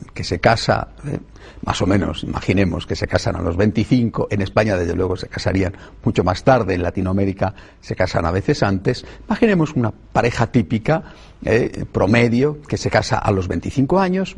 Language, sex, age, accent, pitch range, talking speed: Spanish, male, 50-69, Spanish, 100-165 Hz, 180 wpm